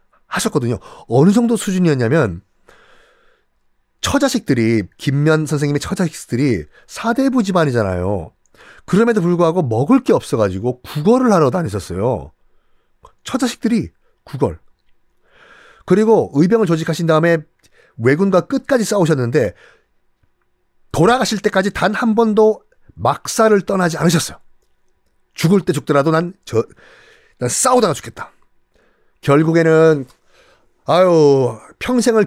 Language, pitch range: Korean, 120-190 Hz